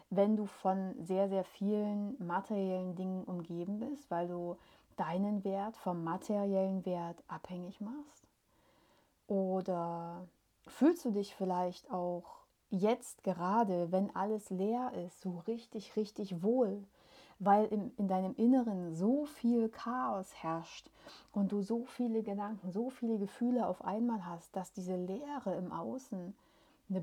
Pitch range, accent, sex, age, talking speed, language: 185-235 Hz, German, female, 30-49, 135 wpm, German